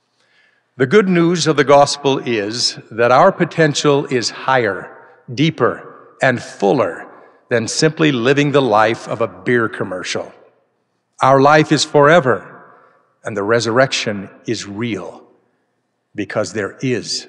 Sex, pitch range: male, 120-160 Hz